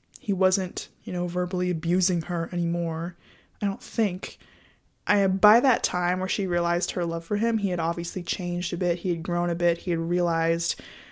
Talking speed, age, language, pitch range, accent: 195 wpm, 20-39, English, 180-220 Hz, American